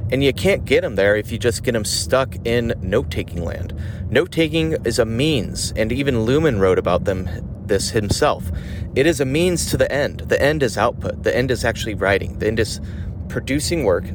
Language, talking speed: English, 205 wpm